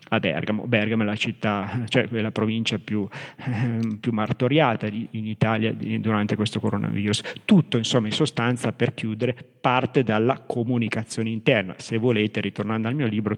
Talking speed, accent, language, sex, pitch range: 155 wpm, native, Italian, male, 110-130 Hz